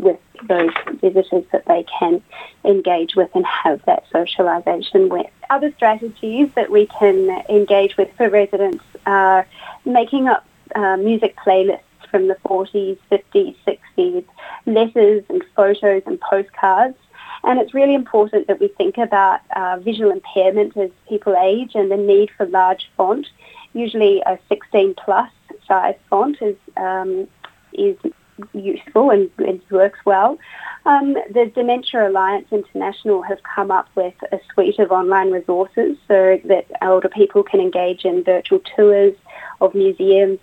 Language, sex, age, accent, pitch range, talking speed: Finnish, female, 30-49, Australian, 190-235 Hz, 140 wpm